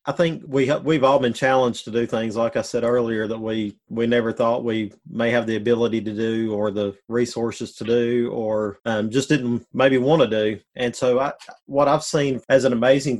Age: 30-49